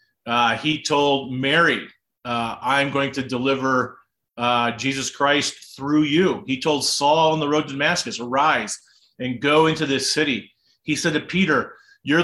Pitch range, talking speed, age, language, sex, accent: 130-155 Hz, 160 wpm, 40-59, English, male, American